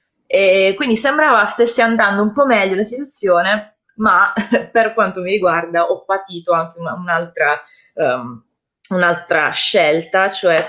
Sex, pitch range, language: female, 170-220 Hz, Italian